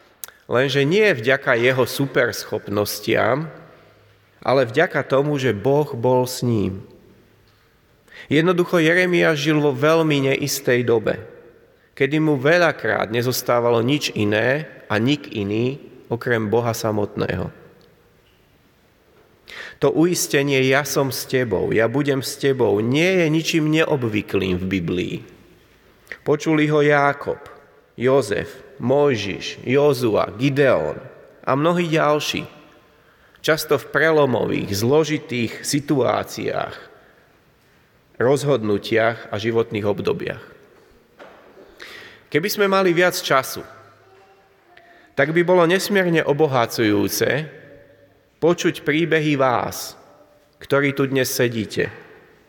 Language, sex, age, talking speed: Slovak, male, 30-49, 95 wpm